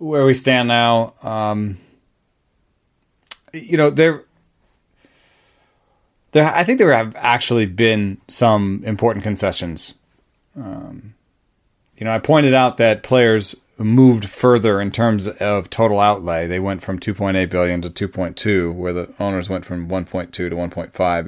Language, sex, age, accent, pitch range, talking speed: English, male, 30-49, American, 95-125 Hz, 160 wpm